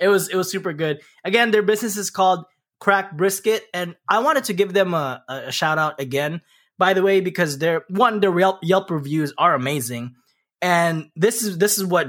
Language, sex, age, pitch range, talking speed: English, male, 20-39, 150-195 Hz, 210 wpm